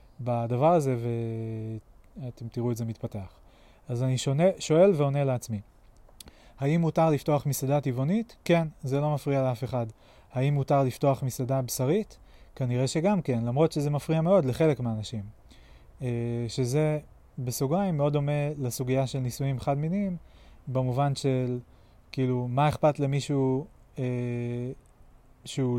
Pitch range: 120-145 Hz